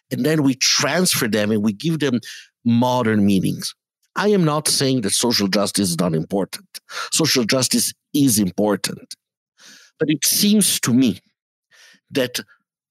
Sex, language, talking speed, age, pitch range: male, English, 145 wpm, 60-79, 115-170 Hz